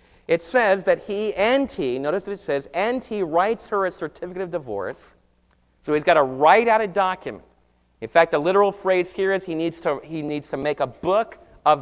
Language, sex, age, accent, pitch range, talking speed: English, male, 40-59, American, 150-200 Hz, 220 wpm